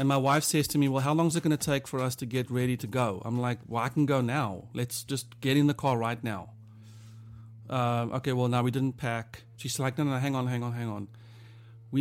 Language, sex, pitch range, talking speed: English, male, 115-130 Hz, 270 wpm